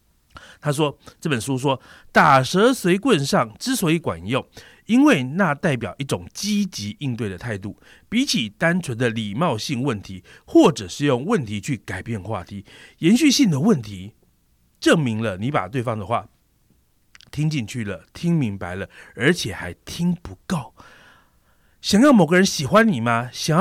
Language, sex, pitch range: Chinese, male, 115-175 Hz